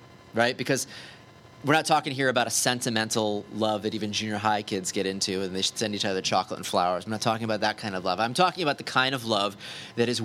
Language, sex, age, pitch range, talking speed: English, male, 30-49, 105-125 Hz, 250 wpm